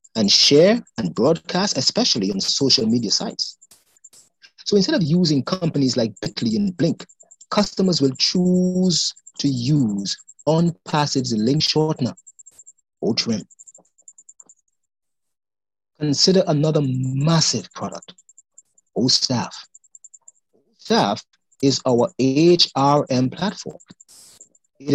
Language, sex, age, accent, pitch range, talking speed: English, male, 30-49, Nigerian, 145-190 Hz, 95 wpm